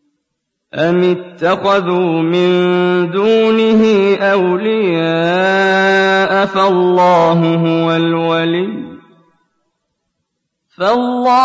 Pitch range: 190-260 Hz